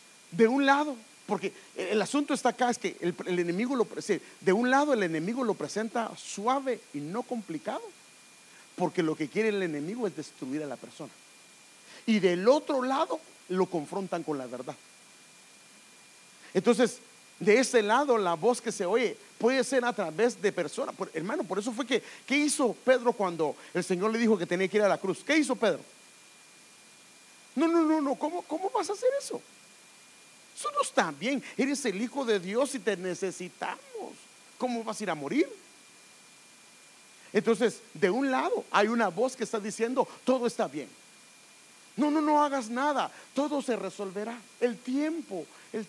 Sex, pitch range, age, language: male, 185-260 Hz, 40-59, English